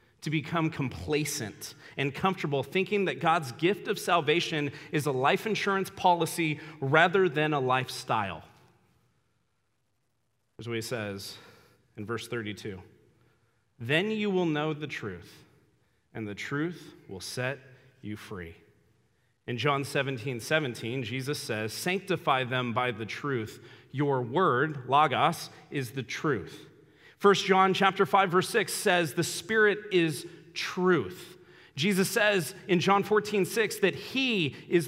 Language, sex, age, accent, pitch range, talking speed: English, male, 40-59, American, 120-180 Hz, 130 wpm